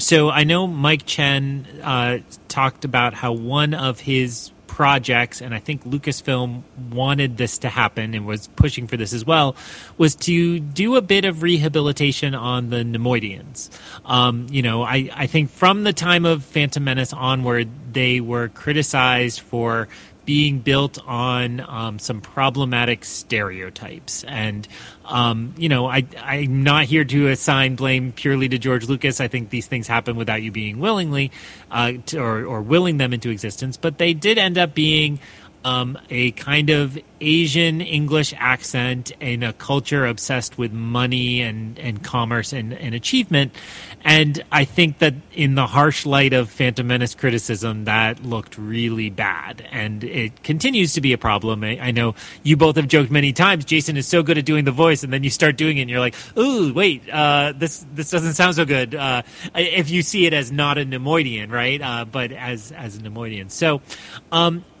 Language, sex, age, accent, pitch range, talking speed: English, male, 30-49, American, 120-150 Hz, 180 wpm